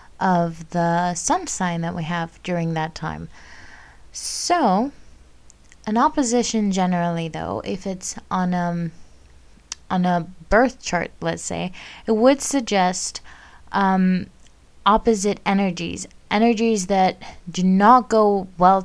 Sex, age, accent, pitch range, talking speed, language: female, 20-39, American, 175-215 Hz, 120 wpm, English